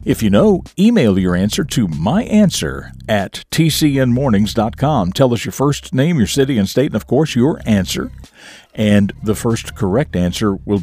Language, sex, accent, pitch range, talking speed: English, male, American, 100-140 Hz, 165 wpm